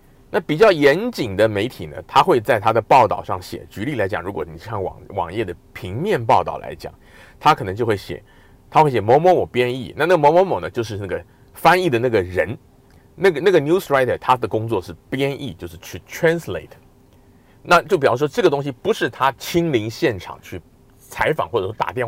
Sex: male